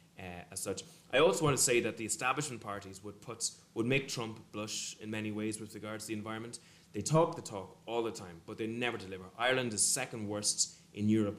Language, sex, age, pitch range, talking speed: English, male, 20-39, 95-115 Hz, 225 wpm